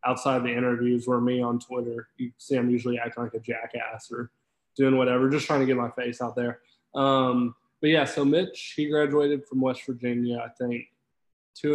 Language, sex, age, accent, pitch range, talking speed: English, male, 20-39, American, 120-130 Hz, 200 wpm